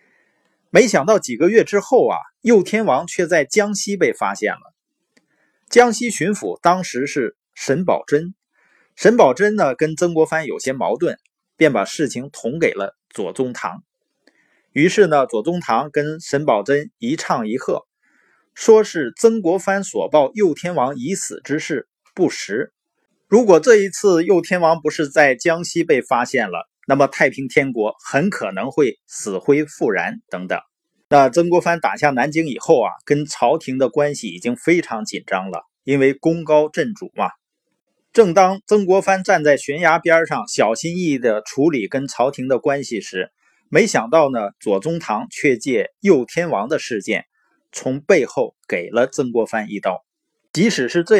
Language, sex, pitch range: Chinese, male, 140-195 Hz